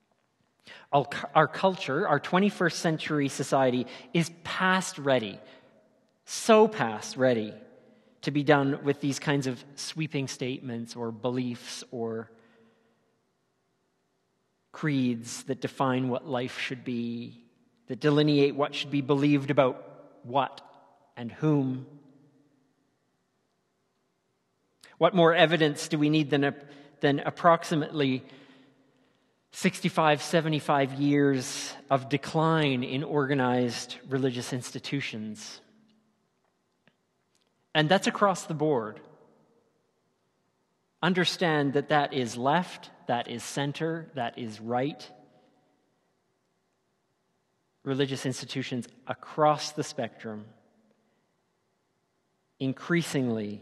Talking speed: 90 wpm